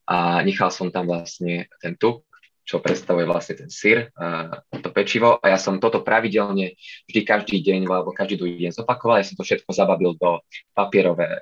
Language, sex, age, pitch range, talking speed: Slovak, male, 20-39, 90-100 Hz, 185 wpm